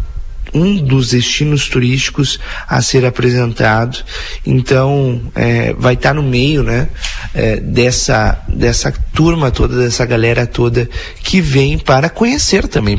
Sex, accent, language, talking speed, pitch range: male, Brazilian, Portuguese, 115 wpm, 120-155 Hz